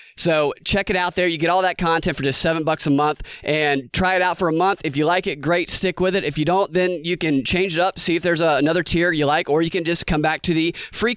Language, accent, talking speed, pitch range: English, American, 300 wpm, 130-170 Hz